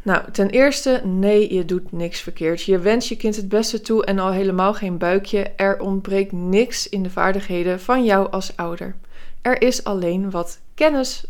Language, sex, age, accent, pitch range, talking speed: Dutch, female, 20-39, Dutch, 185-230 Hz, 185 wpm